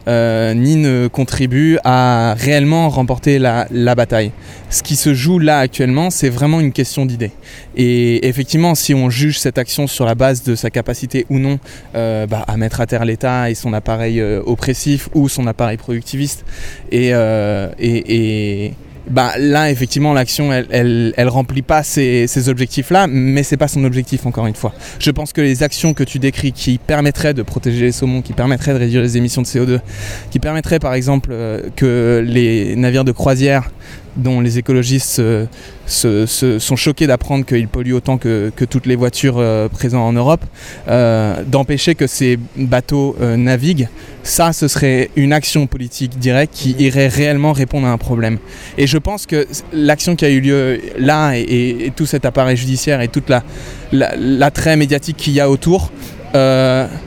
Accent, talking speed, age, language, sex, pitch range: French, 185 wpm, 20-39, French, male, 120-145 Hz